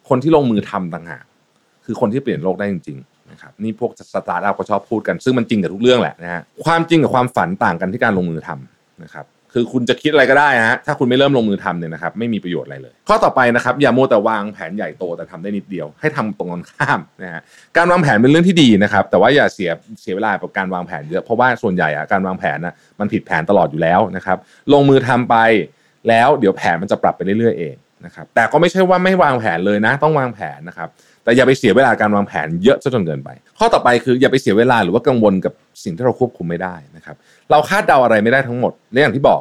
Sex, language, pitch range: male, Thai, 95-145 Hz